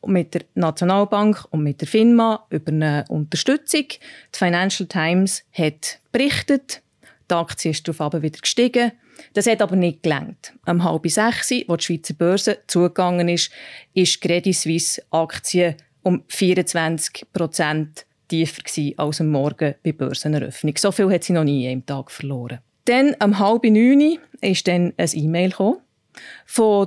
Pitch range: 165-215 Hz